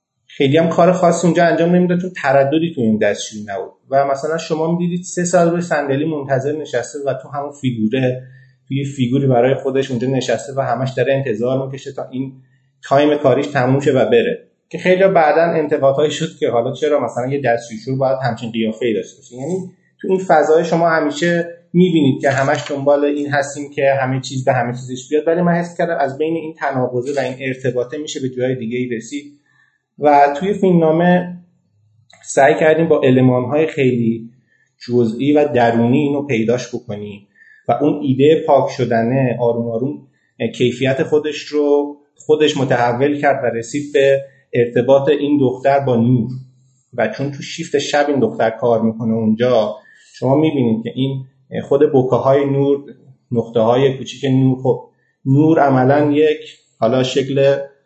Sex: male